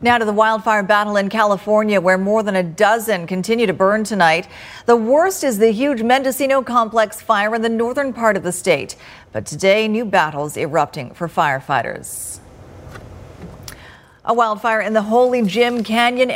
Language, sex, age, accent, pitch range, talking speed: English, female, 50-69, American, 180-235 Hz, 165 wpm